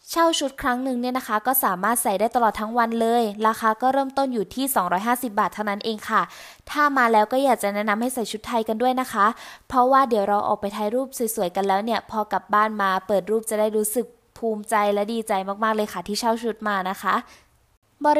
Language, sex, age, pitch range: Thai, female, 20-39, 215-255 Hz